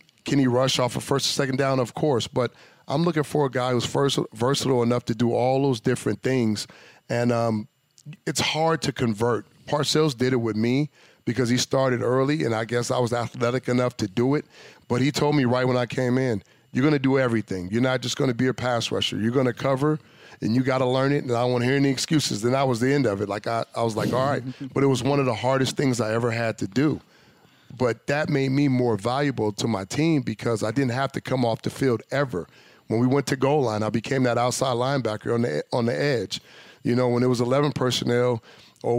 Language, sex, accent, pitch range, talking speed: English, male, American, 120-135 Hz, 250 wpm